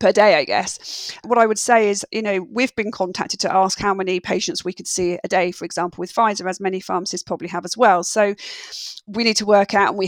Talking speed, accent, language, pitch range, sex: 255 wpm, British, English, 185-215 Hz, female